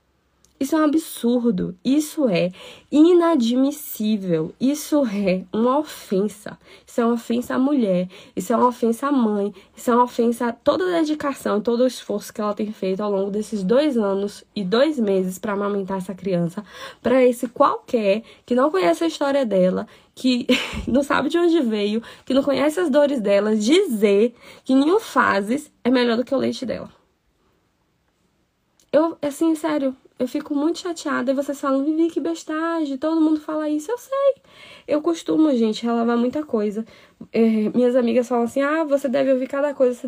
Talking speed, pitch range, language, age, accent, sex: 180 wpm, 225-290 Hz, Portuguese, 10-29, Brazilian, female